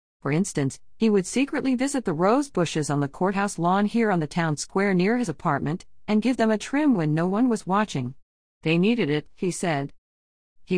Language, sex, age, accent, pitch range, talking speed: English, female, 50-69, American, 140-190 Hz, 205 wpm